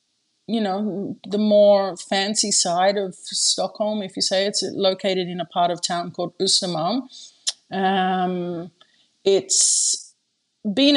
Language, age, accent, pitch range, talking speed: English, 30-49, Australian, 185-225 Hz, 120 wpm